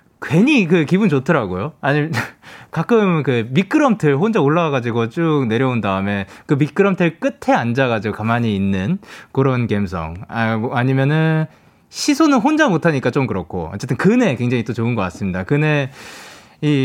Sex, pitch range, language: male, 120-195 Hz, Korean